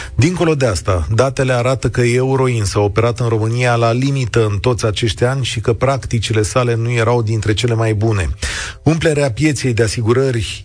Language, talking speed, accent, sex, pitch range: Romanian, 175 wpm, native, male, 100-130 Hz